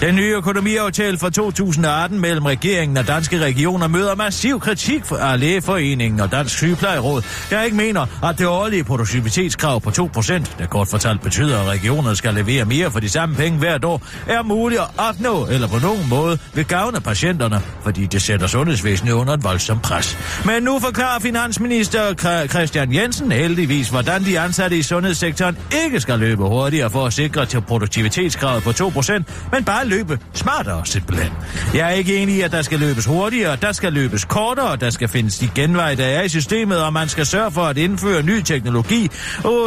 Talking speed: 185 wpm